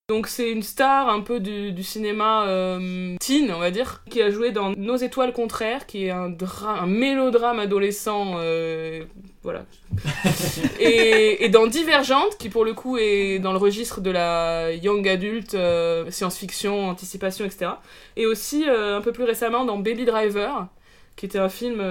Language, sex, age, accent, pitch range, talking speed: French, female, 20-39, French, 190-235 Hz, 180 wpm